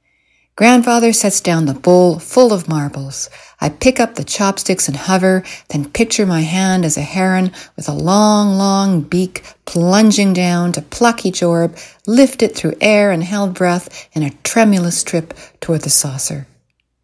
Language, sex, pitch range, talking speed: English, female, 150-200 Hz, 165 wpm